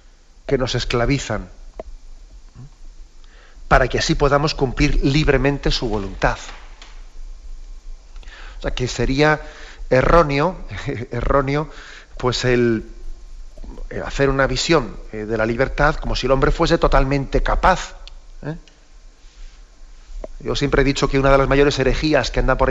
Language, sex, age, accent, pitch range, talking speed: Spanish, male, 40-59, Spanish, 115-145 Hz, 130 wpm